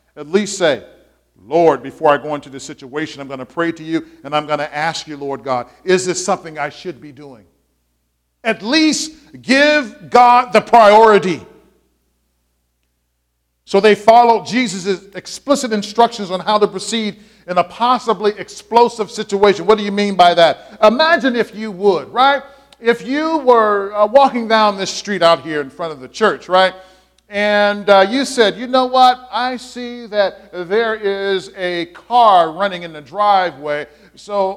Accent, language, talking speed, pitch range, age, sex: American, English, 170 wpm, 160-230 Hz, 50-69, male